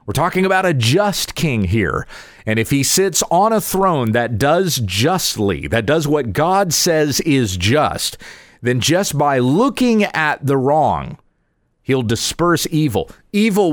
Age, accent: 40-59, American